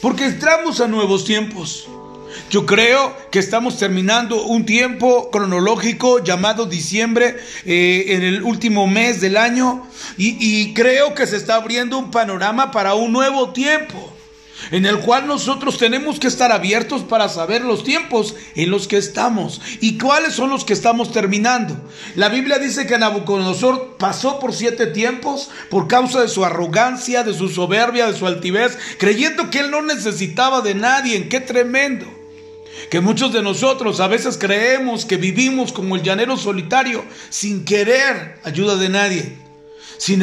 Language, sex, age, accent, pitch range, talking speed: Spanish, male, 40-59, Mexican, 195-255 Hz, 160 wpm